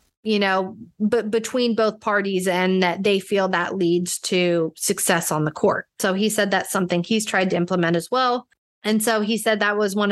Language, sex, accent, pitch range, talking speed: English, female, American, 185-220 Hz, 210 wpm